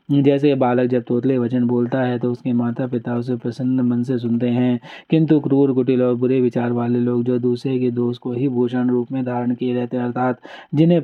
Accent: native